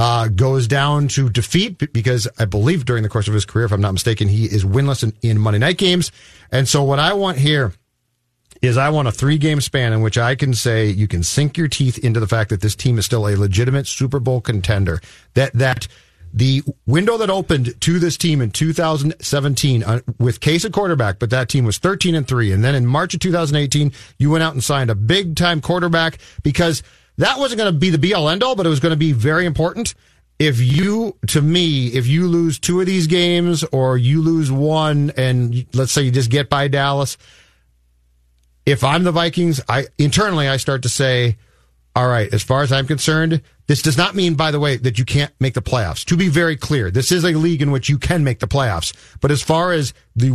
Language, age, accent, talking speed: English, 40-59, American, 225 wpm